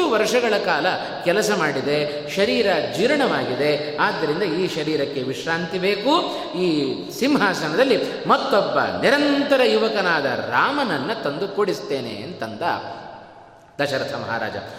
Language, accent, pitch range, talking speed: Kannada, native, 180-245 Hz, 90 wpm